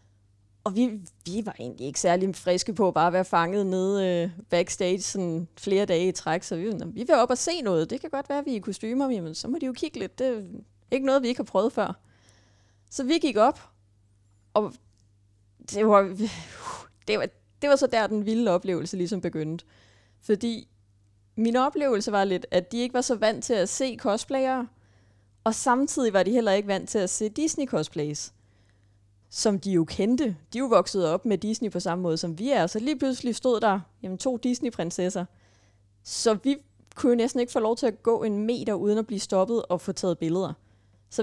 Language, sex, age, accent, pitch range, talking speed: Danish, female, 30-49, native, 170-245 Hz, 210 wpm